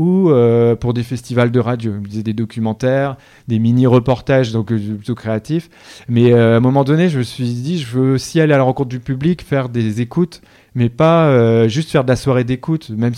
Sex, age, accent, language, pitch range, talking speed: male, 30-49, French, French, 115-150 Hz, 195 wpm